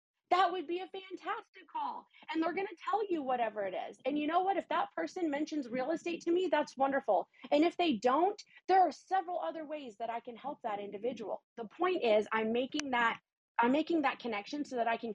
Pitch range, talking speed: 235-335 Hz, 230 wpm